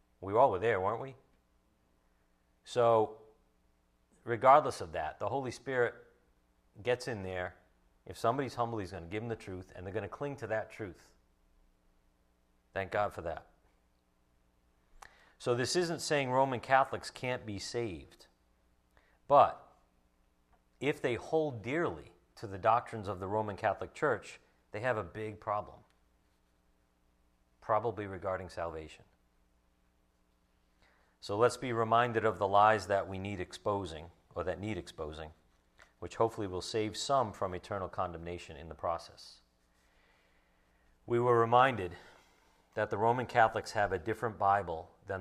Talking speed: 140 wpm